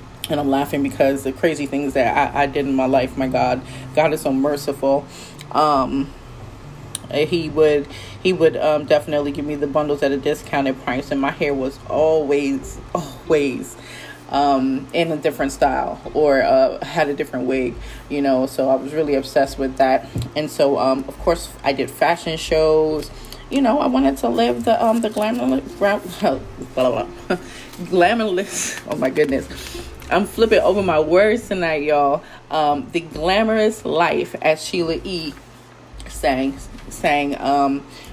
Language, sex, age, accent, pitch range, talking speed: English, female, 30-49, American, 135-155 Hz, 160 wpm